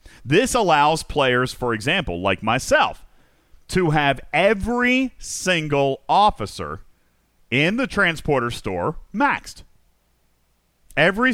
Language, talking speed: English, 95 wpm